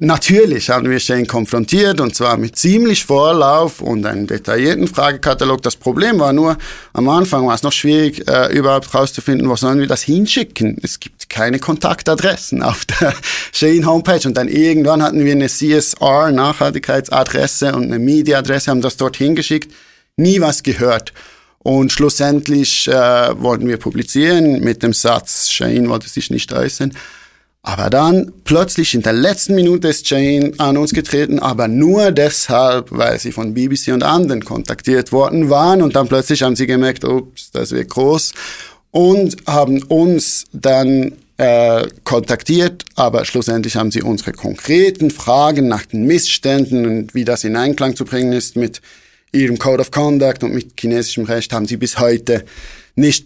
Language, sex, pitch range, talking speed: German, male, 120-150 Hz, 160 wpm